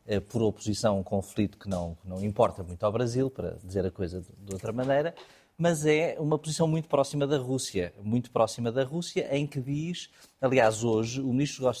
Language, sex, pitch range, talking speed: Portuguese, male, 115-155 Hz, 215 wpm